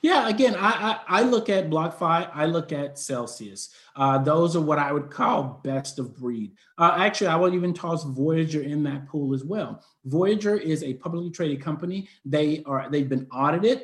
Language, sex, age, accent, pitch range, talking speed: English, male, 30-49, American, 145-185 Hz, 195 wpm